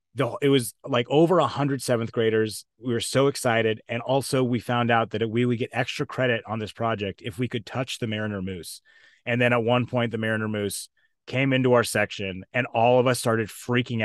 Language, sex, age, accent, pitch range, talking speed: English, male, 30-49, American, 115-140 Hz, 220 wpm